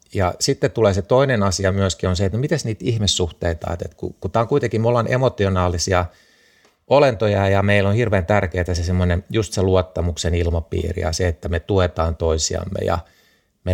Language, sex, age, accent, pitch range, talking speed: Finnish, male, 30-49, native, 85-100 Hz, 185 wpm